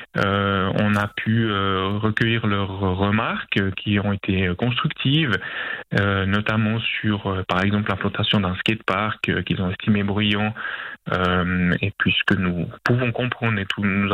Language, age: French, 20-39